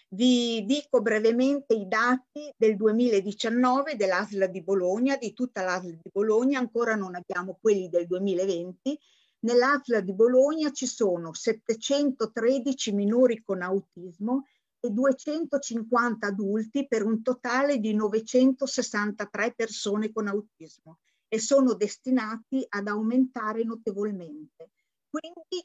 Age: 50-69